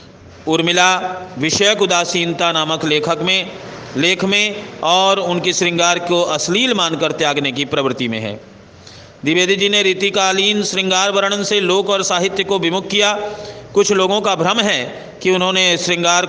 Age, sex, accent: 50-69, male, native